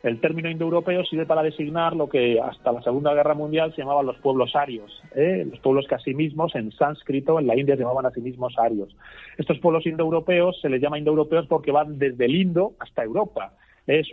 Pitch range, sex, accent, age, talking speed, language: 130-165 Hz, male, Spanish, 40-59, 210 wpm, Spanish